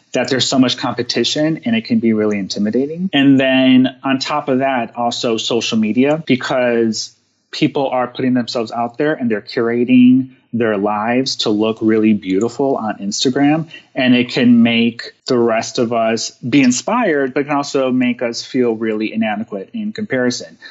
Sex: male